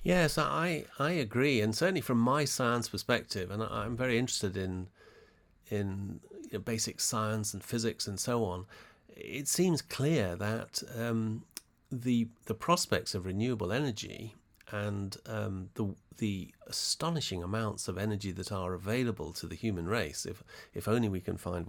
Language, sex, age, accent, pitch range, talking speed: English, male, 40-59, British, 95-120 Hz, 160 wpm